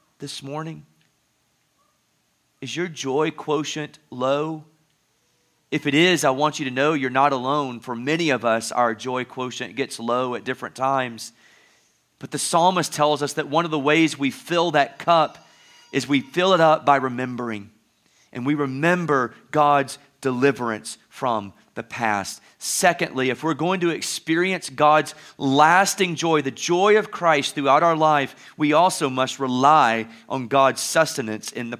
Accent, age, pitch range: American, 30-49, 130-160 Hz